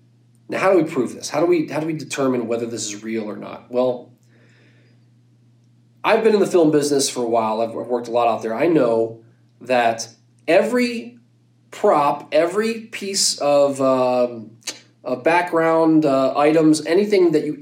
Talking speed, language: 175 wpm, English